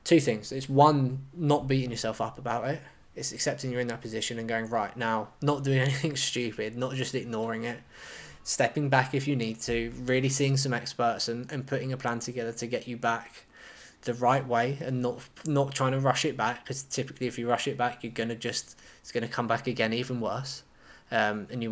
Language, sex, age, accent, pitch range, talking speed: English, male, 20-39, British, 115-135 Hz, 225 wpm